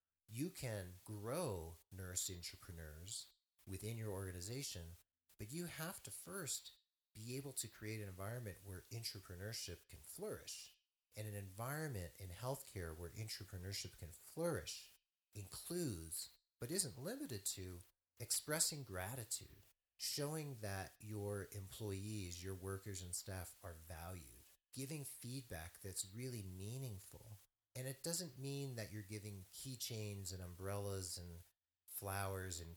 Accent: American